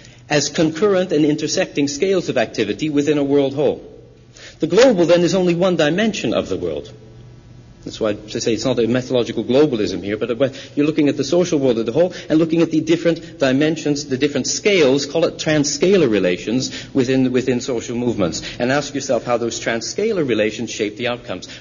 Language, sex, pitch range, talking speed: English, male, 120-170 Hz, 190 wpm